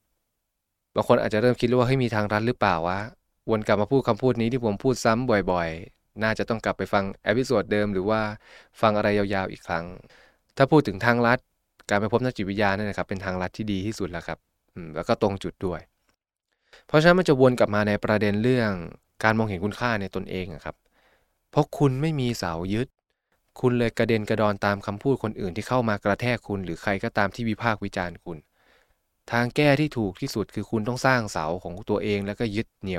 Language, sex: Thai, male